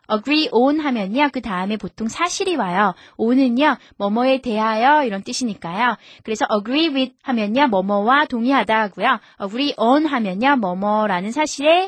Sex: female